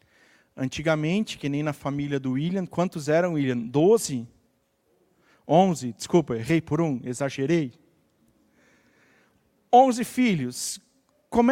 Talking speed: 105 wpm